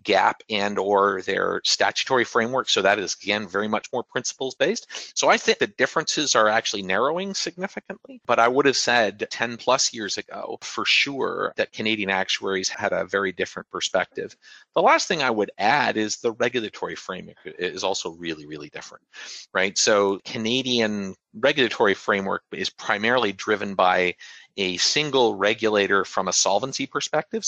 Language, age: English, 40-59